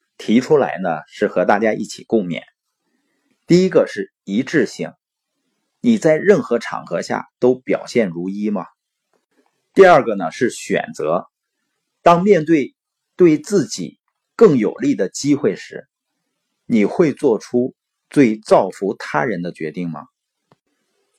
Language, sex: Chinese, male